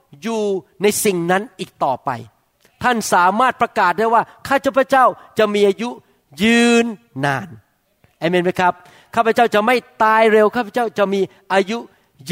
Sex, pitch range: male, 175-235 Hz